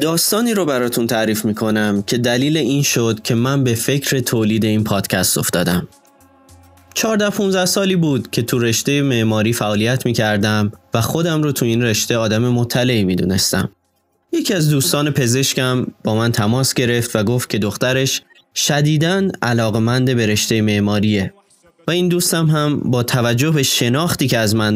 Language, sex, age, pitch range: Persian, male, 20-39, 110-145 Hz